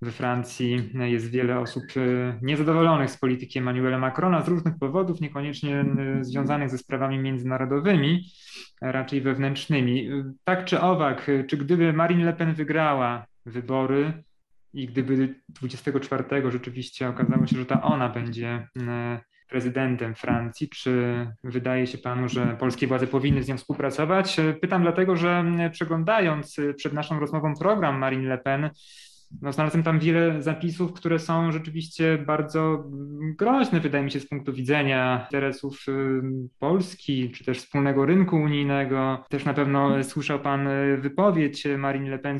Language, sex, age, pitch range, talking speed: Polish, male, 20-39, 130-155 Hz, 135 wpm